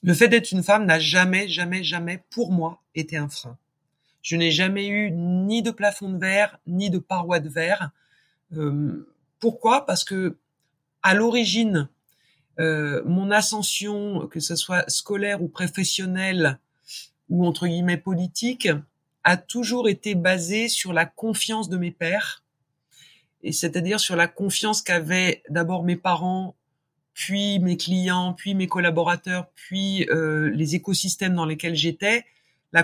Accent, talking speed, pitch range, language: French, 145 wpm, 160-195 Hz, French